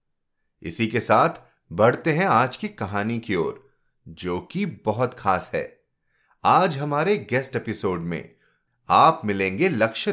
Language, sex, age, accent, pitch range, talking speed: Hindi, male, 30-49, native, 100-165 Hz, 135 wpm